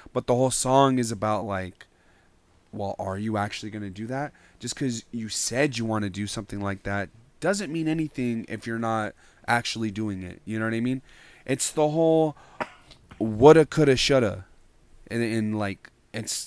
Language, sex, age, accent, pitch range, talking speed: English, male, 20-39, American, 100-130 Hz, 180 wpm